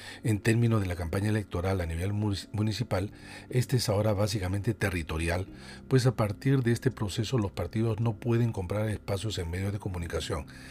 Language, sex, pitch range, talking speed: Spanish, male, 100-125 Hz, 170 wpm